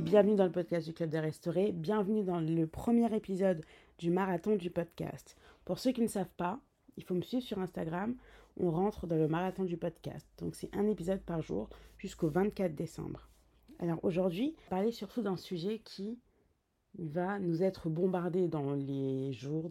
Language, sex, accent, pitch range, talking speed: French, female, French, 170-210 Hz, 180 wpm